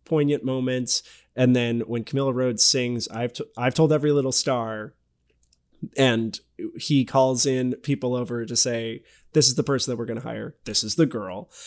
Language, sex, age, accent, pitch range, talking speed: English, male, 20-39, American, 115-135 Hz, 180 wpm